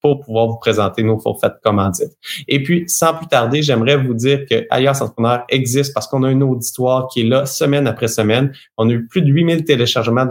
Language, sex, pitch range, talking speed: French, male, 115-150 Hz, 220 wpm